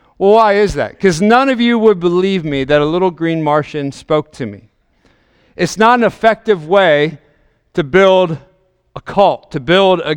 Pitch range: 145-185 Hz